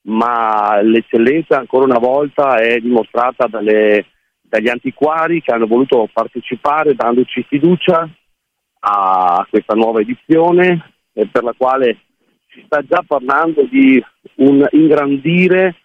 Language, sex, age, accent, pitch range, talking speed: Italian, male, 40-59, native, 115-150 Hz, 115 wpm